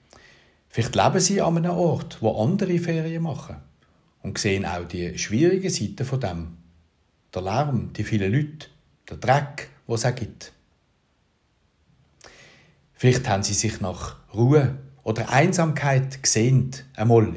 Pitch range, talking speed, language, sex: 90-130 Hz, 135 wpm, German, male